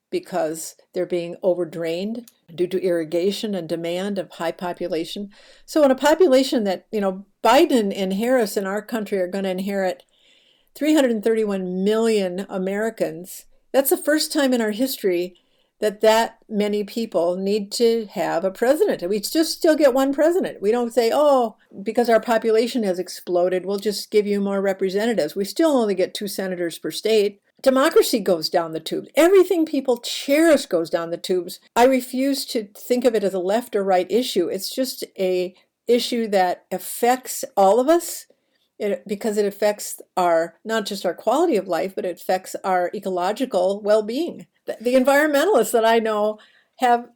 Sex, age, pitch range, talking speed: female, 60-79, 185-255 Hz, 170 wpm